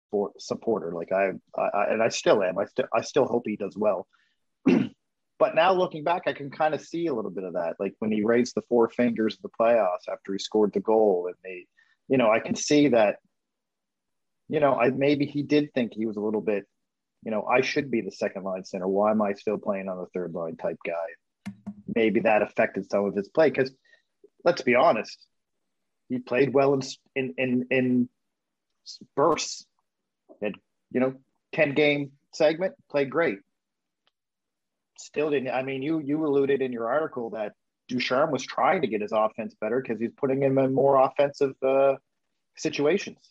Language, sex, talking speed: English, male, 195 wpm